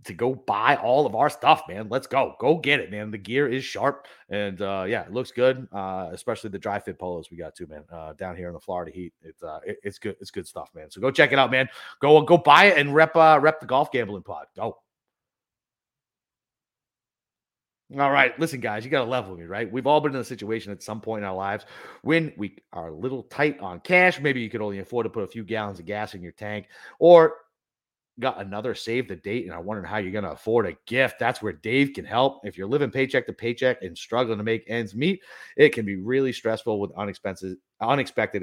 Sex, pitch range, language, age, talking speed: male, 100-130 Hz, English, 30-49, 235 wpm